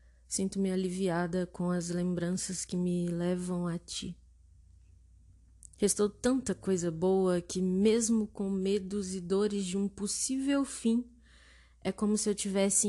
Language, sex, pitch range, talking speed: Portuguese, female, 135-195 Hz, 135 wpm